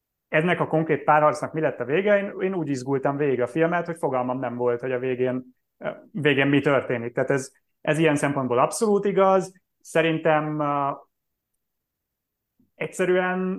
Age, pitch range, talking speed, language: 30-49, 130-150 Hz, 150 wpm, Hungarian